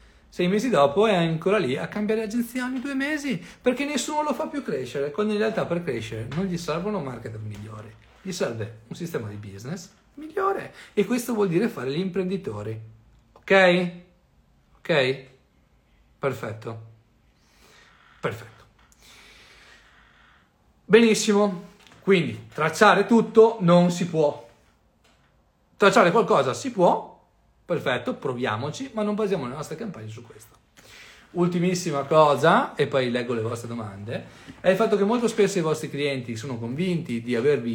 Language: Italian